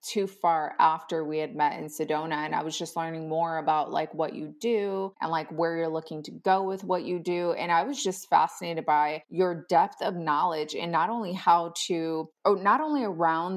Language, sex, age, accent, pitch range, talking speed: English, female, 30-49, American, 165-205 Hz, 215 wpm